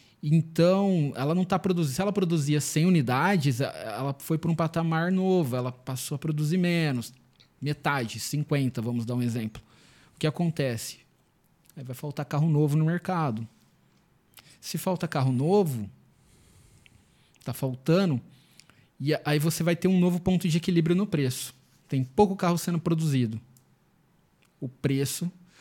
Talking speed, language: 145 wpm, Portuguese